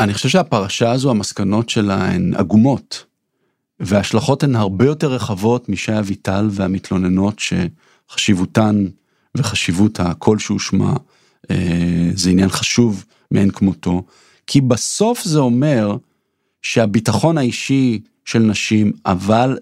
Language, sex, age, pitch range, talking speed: Hebrew, male, 50-69, 105-150 Hz, 105 wpm